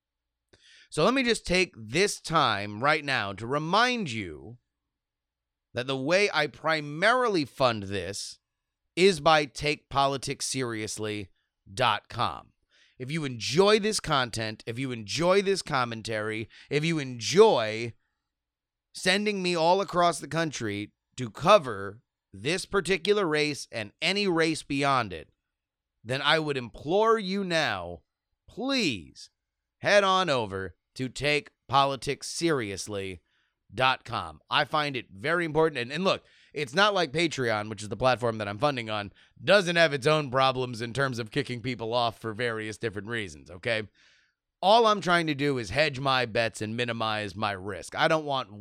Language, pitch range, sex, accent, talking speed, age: English, 110-165 Hz, male, American, 145 wpm, 30-49